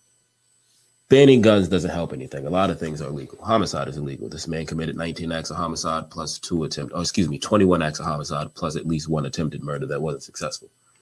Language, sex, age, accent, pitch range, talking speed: English, male, 30-49, American, 85-110 Hz, 220 wpm